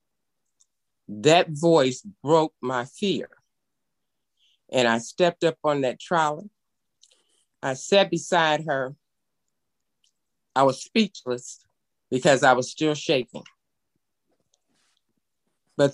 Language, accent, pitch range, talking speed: English, American, 125-165 Hz, 95 wpm